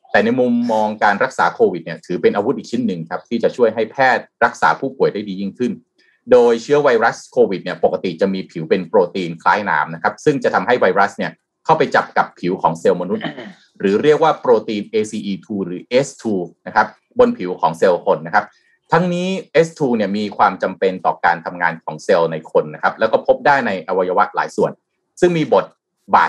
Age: 20-39